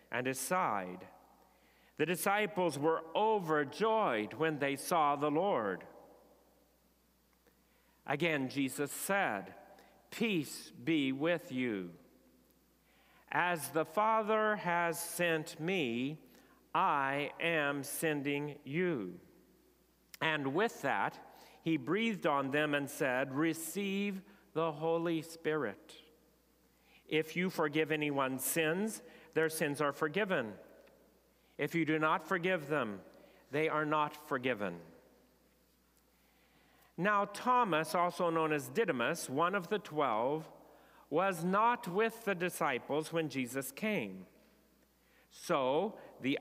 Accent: American